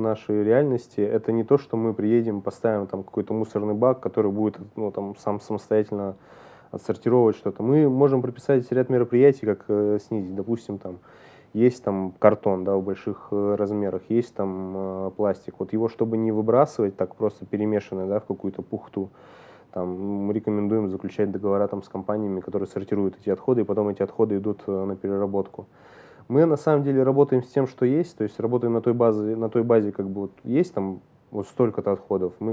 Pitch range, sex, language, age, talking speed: 100-115 Hz, male, Russian, 20-39, 185 wpm